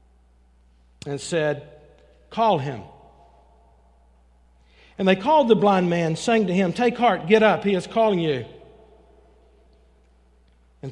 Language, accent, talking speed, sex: English, American, 120 wpm, male